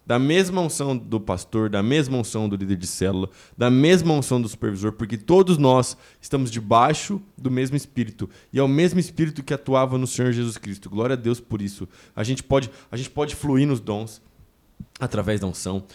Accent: Brazilian